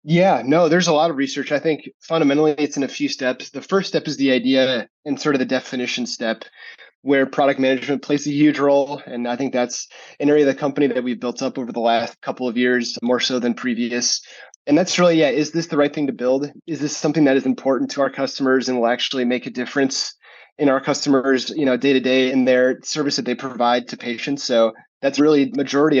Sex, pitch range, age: male, 120-145 Hz, 20-39